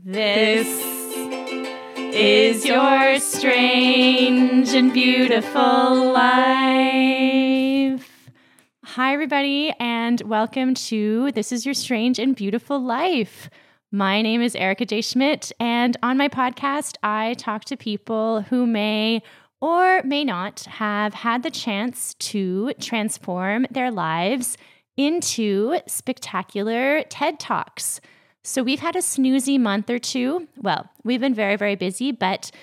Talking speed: 120 wpm